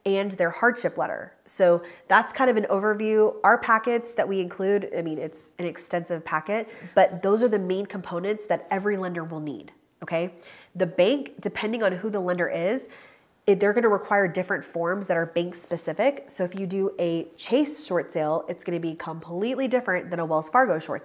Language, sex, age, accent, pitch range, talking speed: English, female, 30-49, American, 175-215 Hz, 195 wpm